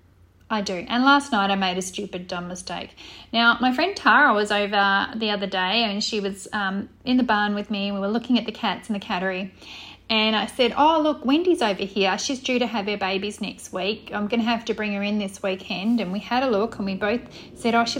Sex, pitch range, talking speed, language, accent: female, 200-245 Hz, 250 wpm, English, Australian